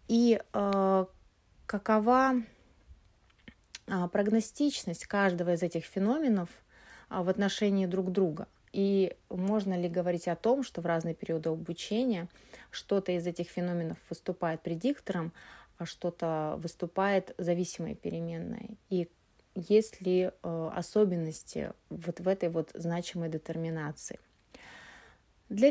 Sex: female